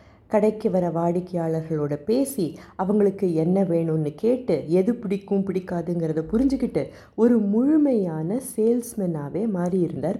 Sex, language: female, Tamil